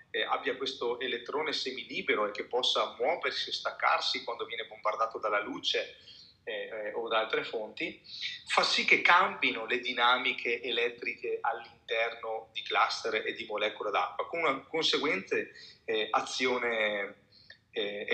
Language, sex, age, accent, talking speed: Italian, male, 30-49, native, 140 wpm